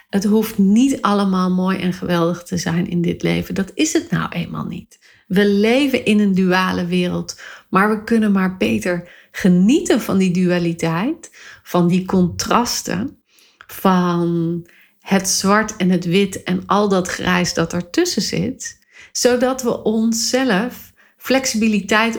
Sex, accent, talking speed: female, Dutch, 145 wpm